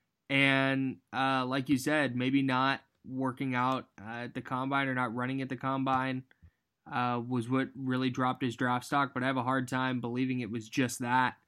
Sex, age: male, 20-39